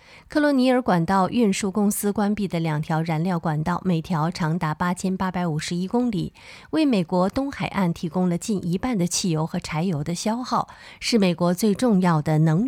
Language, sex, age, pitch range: Chinese, female, 20-39, 170-215 Hz